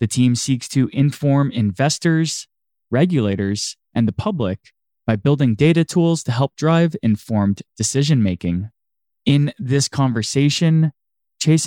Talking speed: 120 wpm